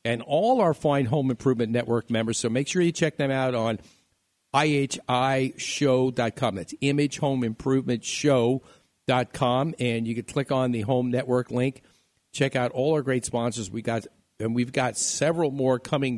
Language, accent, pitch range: English, American, 115-135 Hz